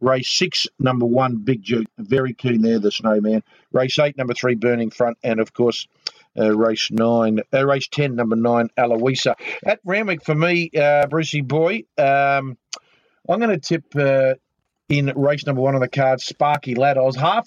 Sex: male